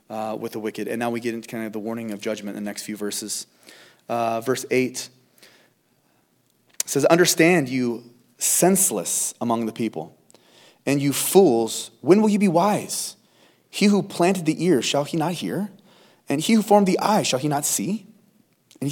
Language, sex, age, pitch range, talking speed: English, male, 30-49, 115-170 Hz, 185 wpm